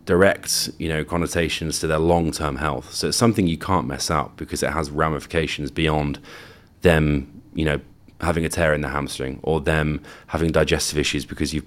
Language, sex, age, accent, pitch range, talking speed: English, male, 30-49, British, 75-90 Hz, 185 wpm